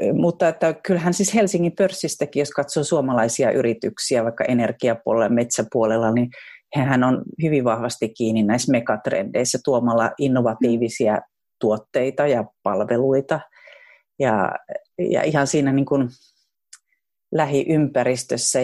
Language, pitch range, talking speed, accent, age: Finnish, 120-165 Hz, 110 wpm, native, 40-59